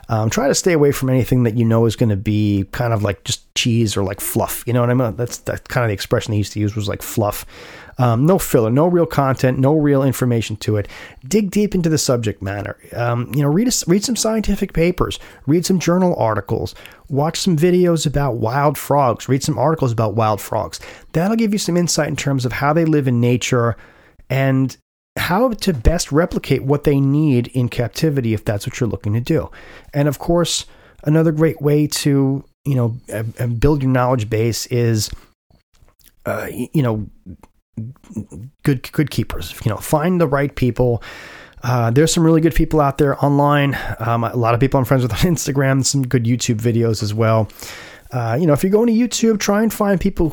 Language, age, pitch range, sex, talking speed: English, 30-49, 115-155 Hz, male, 210 wpm